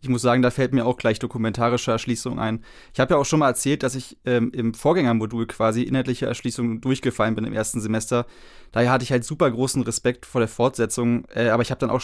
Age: 20-39